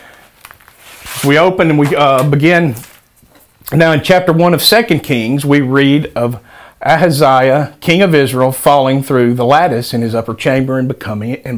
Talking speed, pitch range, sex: 160 wpm, 120-155 Hz, male